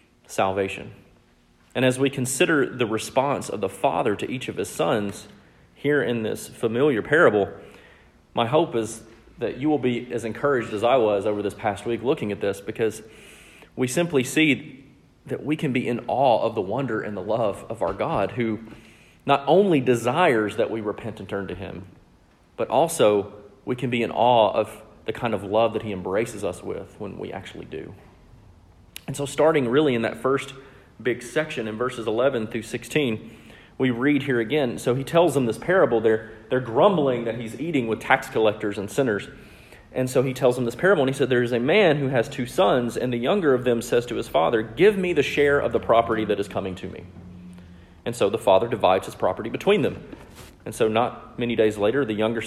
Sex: male